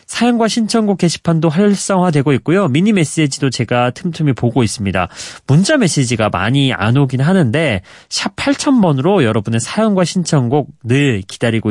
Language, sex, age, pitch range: Korean, male, 30-49, 115-175 Hz